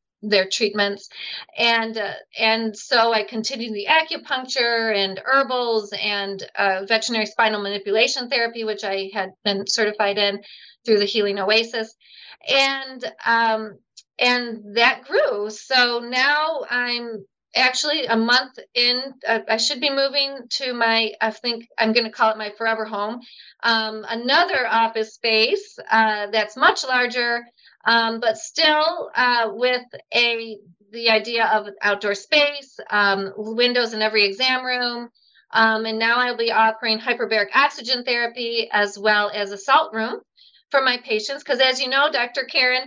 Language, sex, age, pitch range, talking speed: English, female, 40-59, 210-250 Hz, 150 wpm